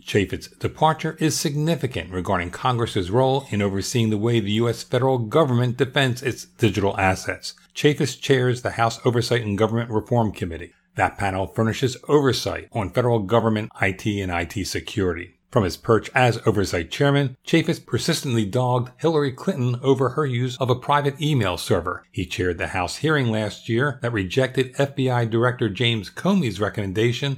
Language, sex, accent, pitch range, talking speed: English, male, American, 100-135 Hz, 160 wpm